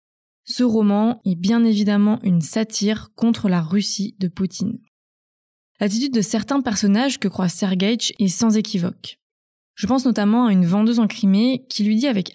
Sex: female